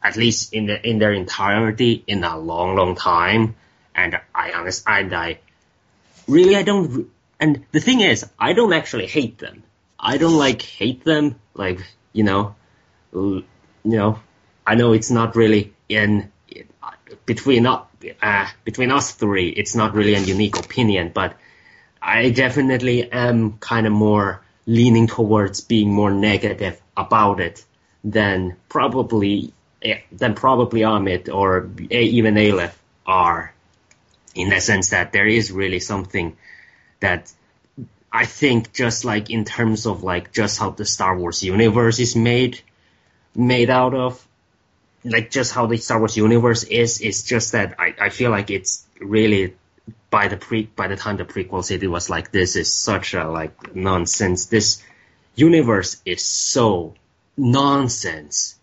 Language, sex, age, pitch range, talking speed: English, male, 20-39, 95-120 Hz, 150 wpm